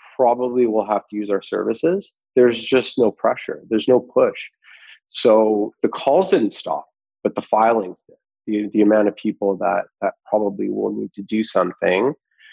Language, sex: English, male